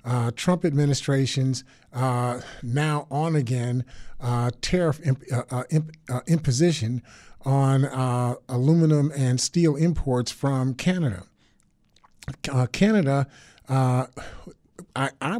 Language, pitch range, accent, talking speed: English, 125-160 Hz, American, 100 wpm